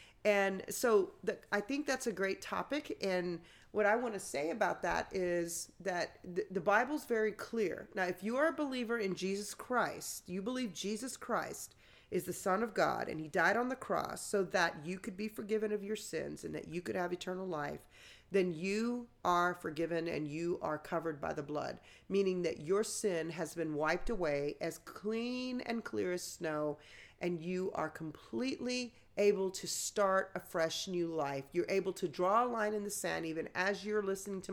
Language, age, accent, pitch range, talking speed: English, 40-59, American, 165-215 Hz, 195 wpm